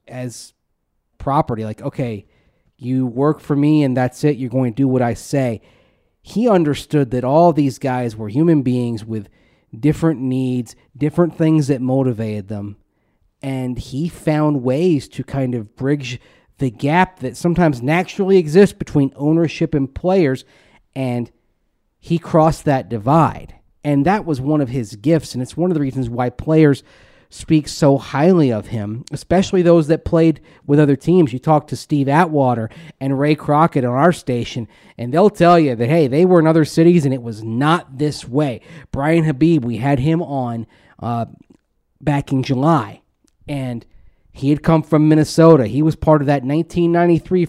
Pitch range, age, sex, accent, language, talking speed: 125-160 Hz, 40-59, male, American, English, 170 wpm